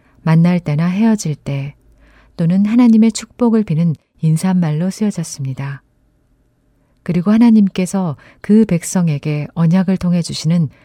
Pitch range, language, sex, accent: 140-195 Hz, Korean, female, native